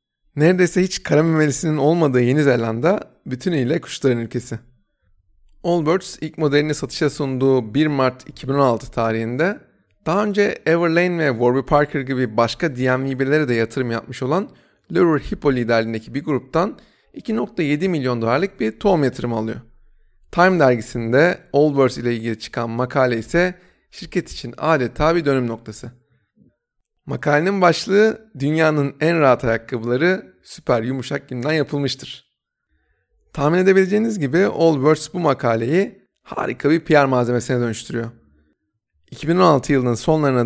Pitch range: 120-160 Hz